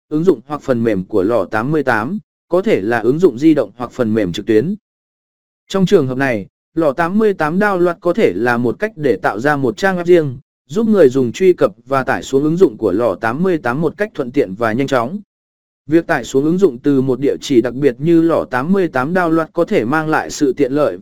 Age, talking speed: 20-39, 230 wpm